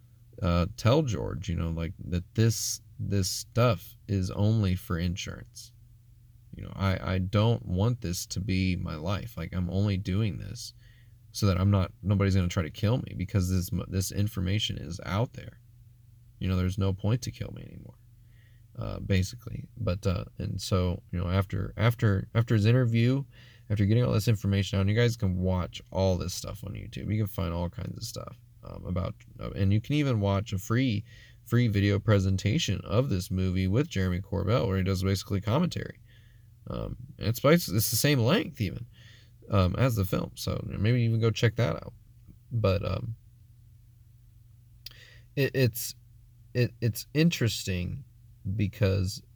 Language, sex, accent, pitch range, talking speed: English, male, American, 95-115 Hz, 175 wpm